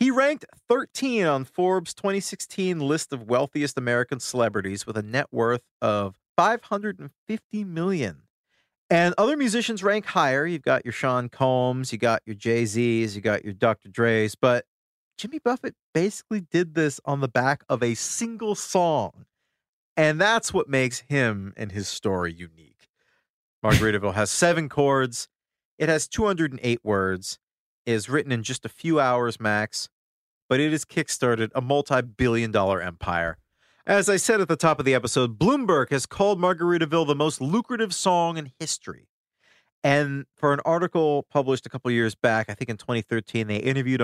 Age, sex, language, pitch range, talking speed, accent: 40-59, male, English, 115-175 Hz, 160 wpm, American